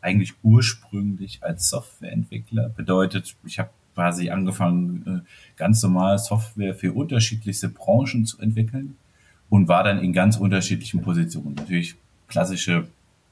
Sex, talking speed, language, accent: male, 115 wpm, German, German